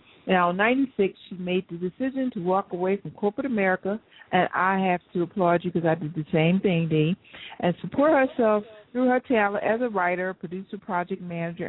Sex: female